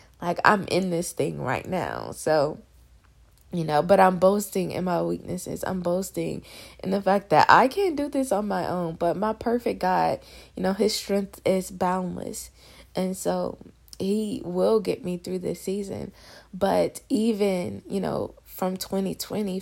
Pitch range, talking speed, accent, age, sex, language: 175-210 Hz, 165 wpm, American, 20-39, female, English